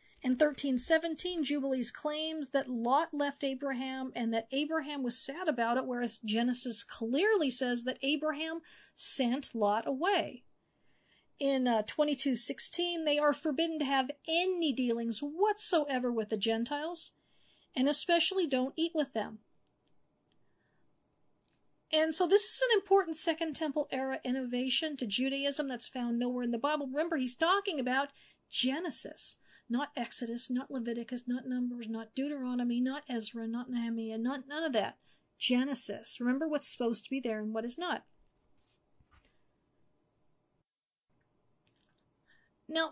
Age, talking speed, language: 50-69, 135 wpm, English